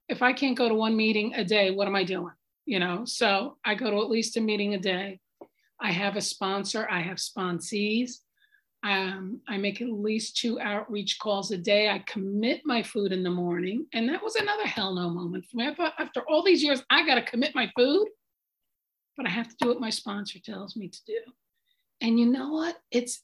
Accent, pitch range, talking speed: American, 195-240 Hz, 220 wpm